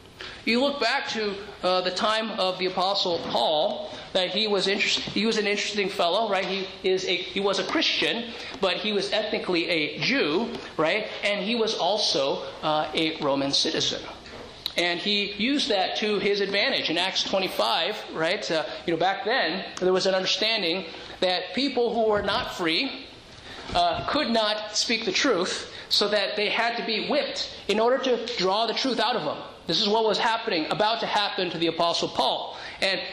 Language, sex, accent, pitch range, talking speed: English, male, American, 180-225 Hz, 190 wpm